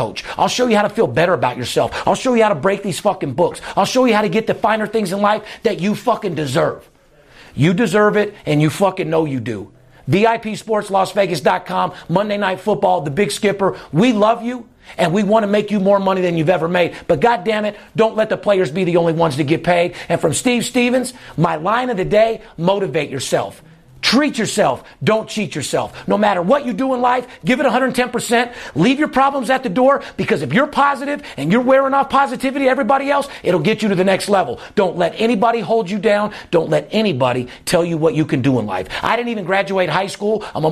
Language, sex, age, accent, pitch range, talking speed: English, male, 40-59, American, 175-225 Hz, 230 wpm